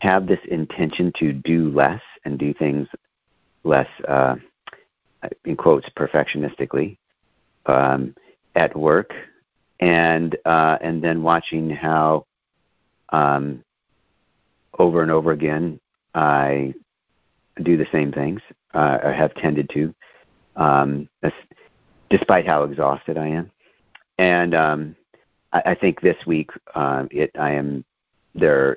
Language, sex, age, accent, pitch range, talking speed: English, male, 50-69, American, 70-80 Hz, 120 wpm